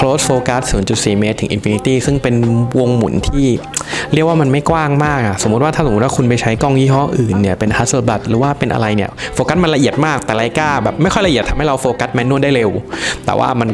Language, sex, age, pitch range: Thai, male, 20-39, 105-130 Hz